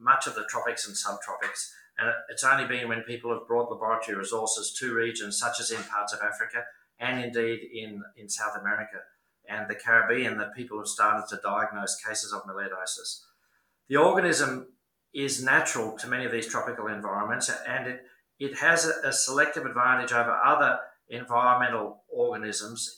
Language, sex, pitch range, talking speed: English, male, 115-140 Hz, 165 wpm